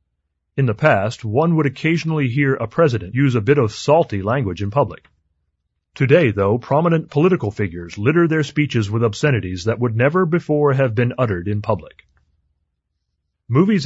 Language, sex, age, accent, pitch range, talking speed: English, male, 30-49, American, 95-145 Hz, 160 wpm